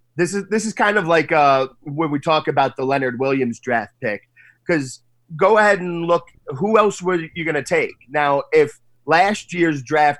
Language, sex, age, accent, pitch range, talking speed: English, male, 30-49, American, 130-165 Hz, 195 wpm